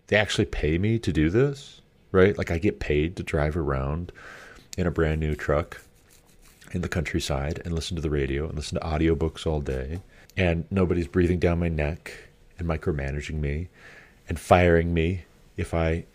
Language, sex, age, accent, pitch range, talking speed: English, male, 30-49, American, 75-95 Hz, 180 wpm